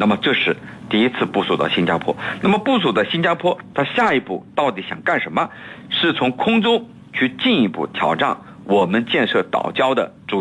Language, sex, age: Chinese, male, 50-69